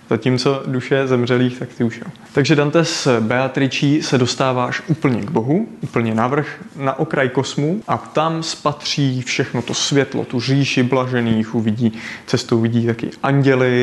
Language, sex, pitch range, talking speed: Czech, male, 120-140 Hz, 155 wpm